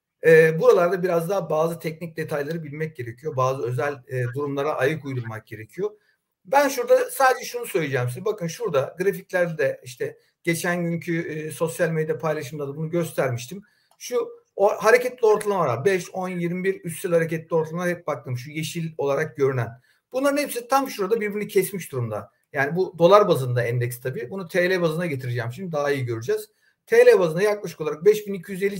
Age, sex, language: 50-69, male, Turkish